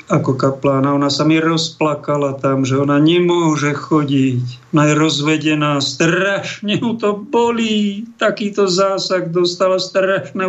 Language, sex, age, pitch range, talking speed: Slovak, male, 50-69, 135-170 Hz, 125 wpm